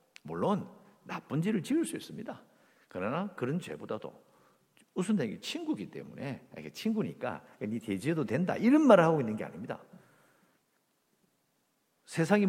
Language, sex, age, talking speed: English, male, 50-69, 120 wpm